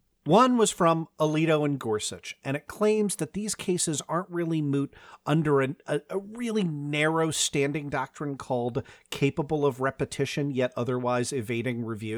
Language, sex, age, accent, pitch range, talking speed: English, male, 40-59, American, 130-170 Hz, 150 wpm